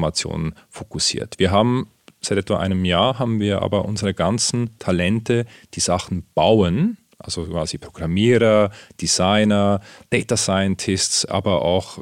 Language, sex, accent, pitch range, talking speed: German, male, German, 90-115 Hz, 120 wpm